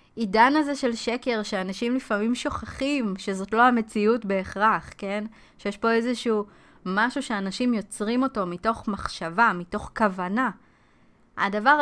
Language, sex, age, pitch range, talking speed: Hebrew, female, 20-39, 190-230 Hz, 120 wpm